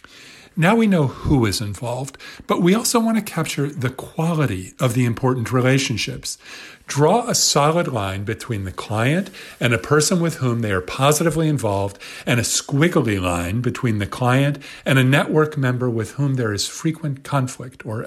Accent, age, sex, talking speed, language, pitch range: American, 40-59, male, 175 wpm, English, 115-145 Hz